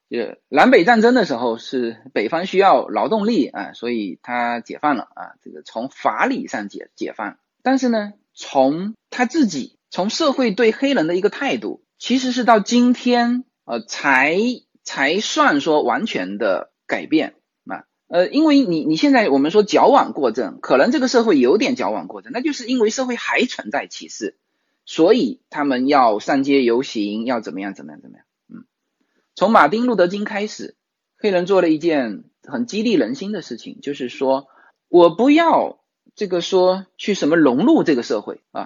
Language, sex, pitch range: Chinese, male, 175-265 Hz